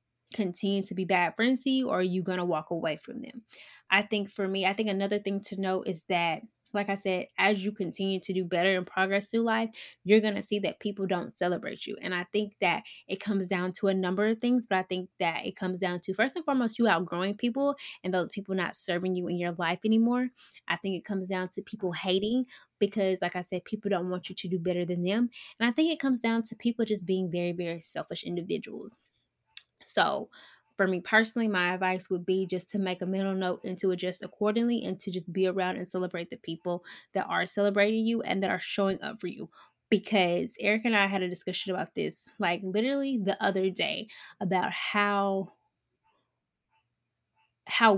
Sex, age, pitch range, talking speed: female, 10-29, 185-220 Hz, 220 wpm